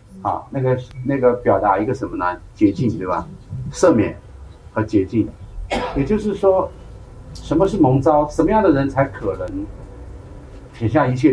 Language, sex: Chinese, male